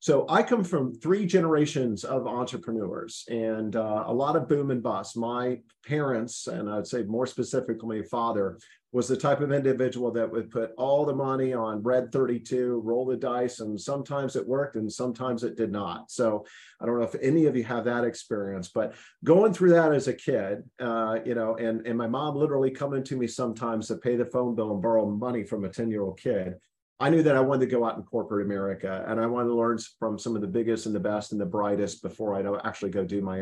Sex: male